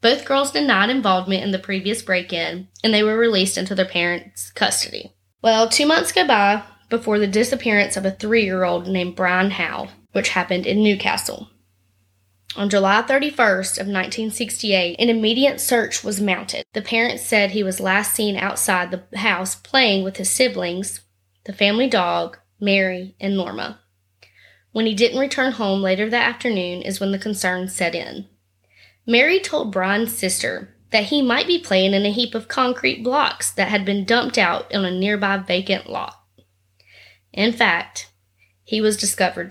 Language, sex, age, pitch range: English, female, 20-39, 180-225 Hz